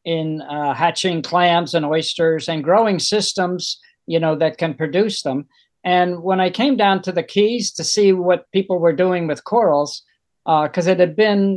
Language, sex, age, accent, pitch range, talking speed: English, male, 50-69, American, 165-200 Hz, 185 wpm